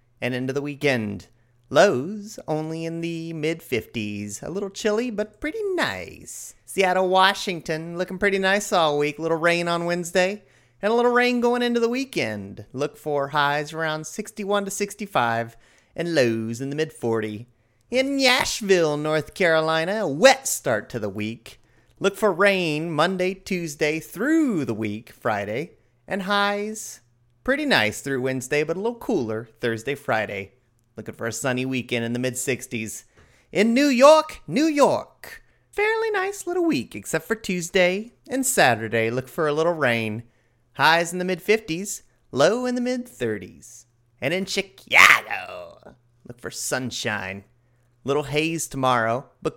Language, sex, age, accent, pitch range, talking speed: English, male, 30-49, American, 120-200 Hz, 150 wpm